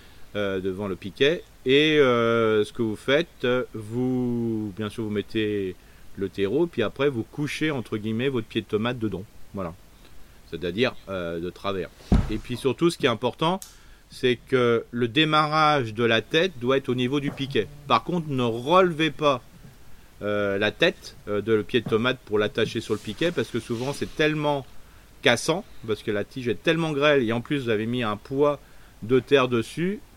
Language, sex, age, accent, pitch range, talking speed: French, male, 40-59, French, 105-135 Hz, 195 wpm